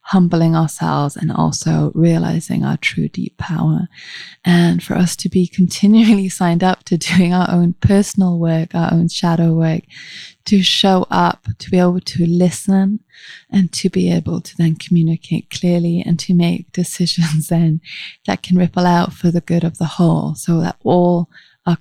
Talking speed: 170 wpm